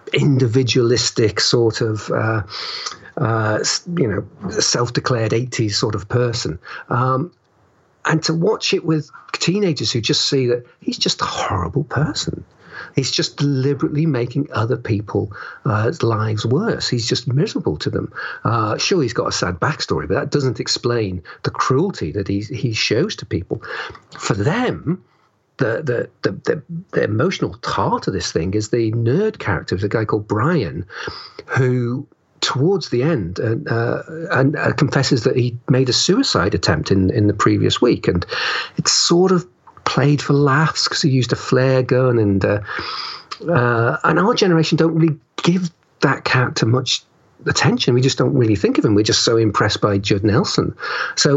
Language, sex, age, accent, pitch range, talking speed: English, male, 50-69, British, 115-155 Hz, 165 wpm